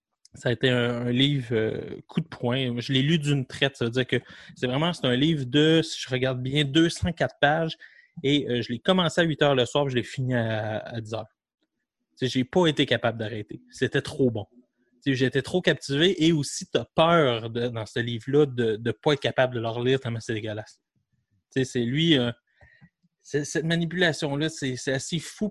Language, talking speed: French, 205 wpm